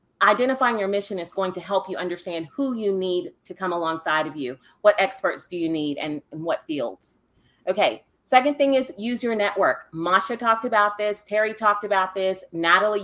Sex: female